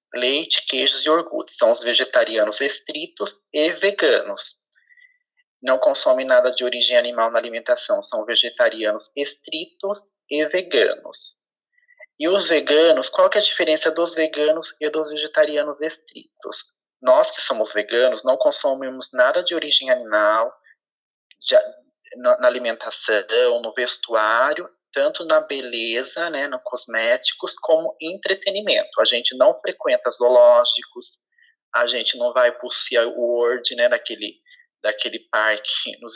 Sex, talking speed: male, 125 wpm